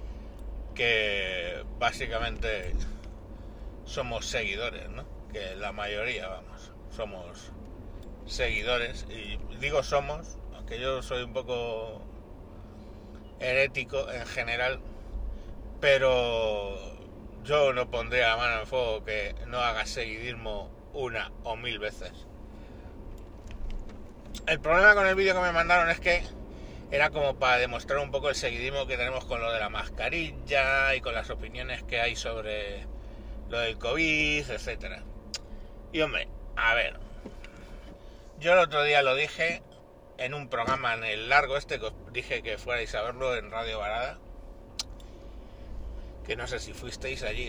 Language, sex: Spanish, male